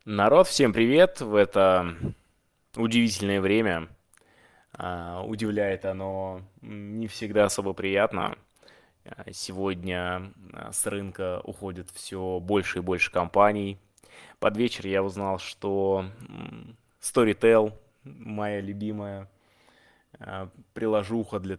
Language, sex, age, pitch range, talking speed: Russian, male, 20-39, 95-115 Hz, 90 wpm